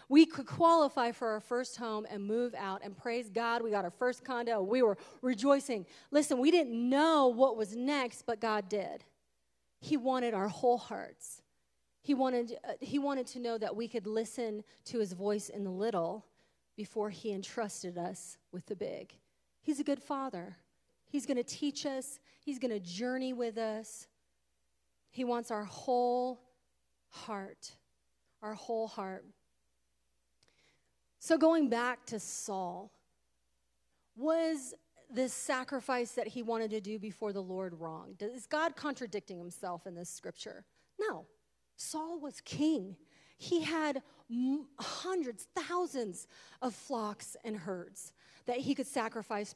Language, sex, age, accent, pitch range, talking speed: English, female, 30-49, American, 195-260 Hz, 150 wpm